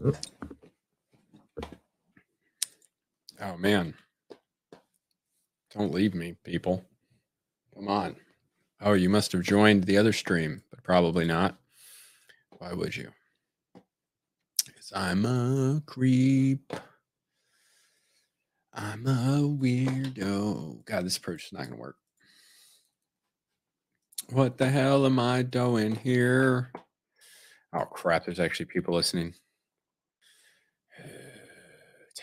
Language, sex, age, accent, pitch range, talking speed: English, male, 40-59, American, 95-125 Hz, 95 wpm